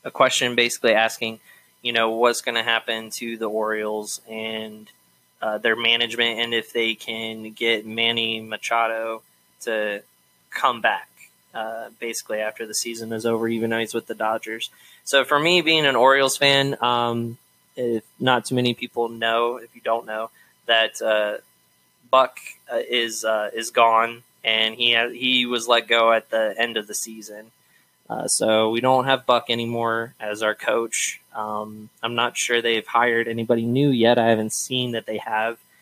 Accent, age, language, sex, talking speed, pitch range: American, 20-39, English, male, 175 wpm, 110-120 Hz